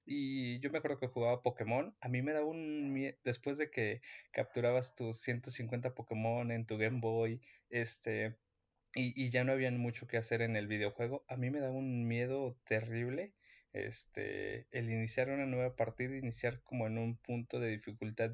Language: Spanish